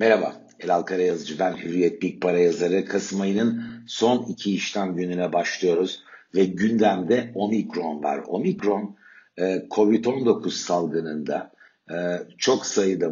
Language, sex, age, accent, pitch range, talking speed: Turkish, male, 60-79, native, 85-100 Hz, 110 wpm